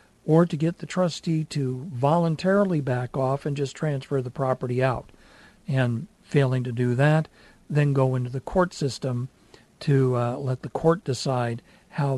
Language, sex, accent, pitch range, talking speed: English, male, American, 130-165 Hz, 165 wpm